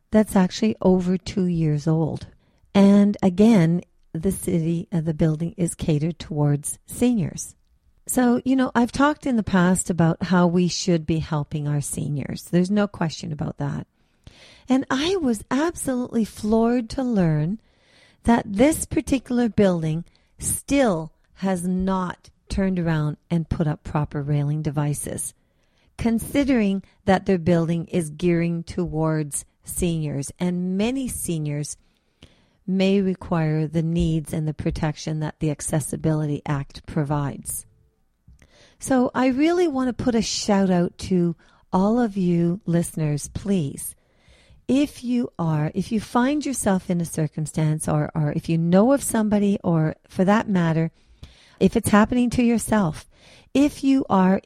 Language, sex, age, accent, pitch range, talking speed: English, female, 50-69, American, 155-210 Hz, 140 wpm